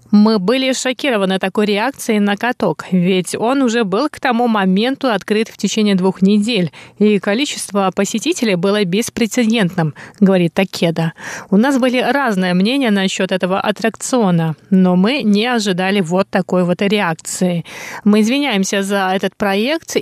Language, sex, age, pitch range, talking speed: Russian, female, 20-39, 190-245 Hz, 140 wpm